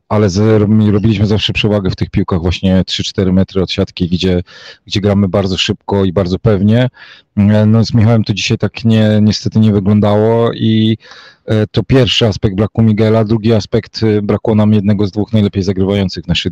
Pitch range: 100-110 Hz